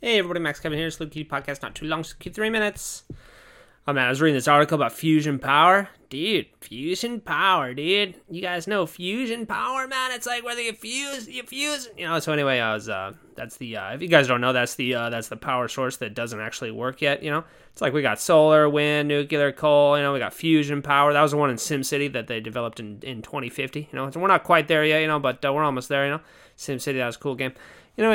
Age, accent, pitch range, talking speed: 20-39, American, 130-160 Hz, 260 wpm